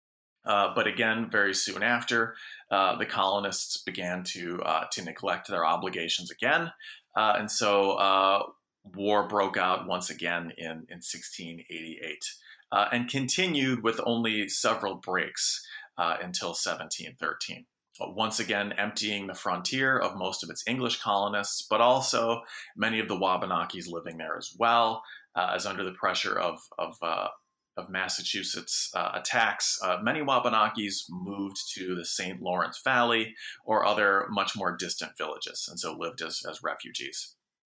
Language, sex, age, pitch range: English, male, 30-49, 90-115 Hz